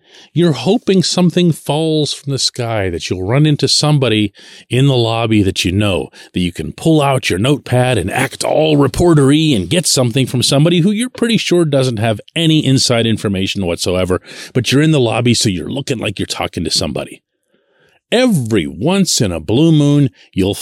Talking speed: 185 wpm